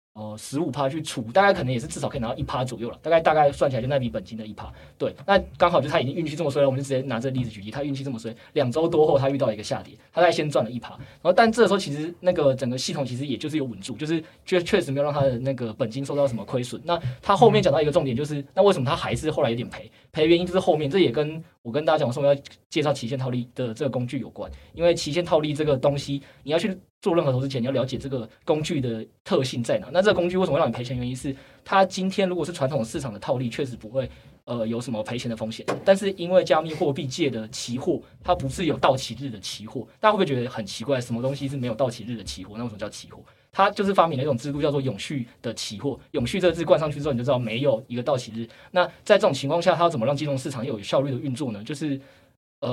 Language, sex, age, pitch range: Chinese, male, 20-39, 120-160 Hz